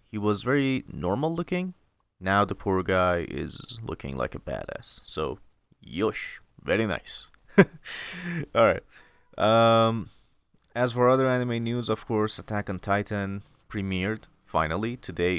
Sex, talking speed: male, 125 wpm